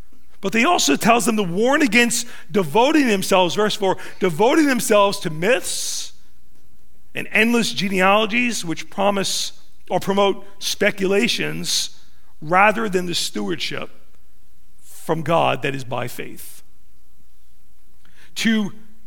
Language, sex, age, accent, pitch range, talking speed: English, male, 40-59, American, 165-220 Hz, 110 wpm